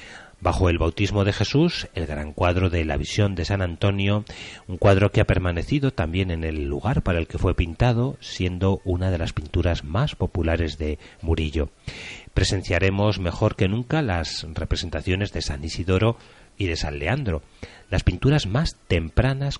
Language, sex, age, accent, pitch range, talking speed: Spanish, male, 40-59, Spanish, 85-110 Hz, 165 wpm